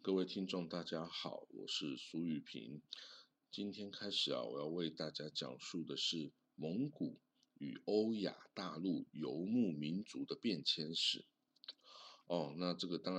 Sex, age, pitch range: male, 50-69, 80-100 Hz